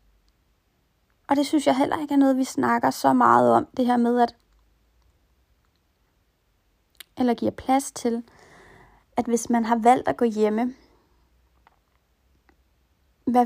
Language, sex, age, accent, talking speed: Danish, female, 30-49, native, 135 wpm